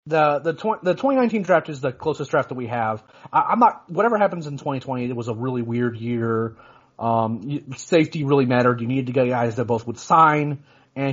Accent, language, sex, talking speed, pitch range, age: American, English, male, 220 wpm, 120-150 Hz, 30-49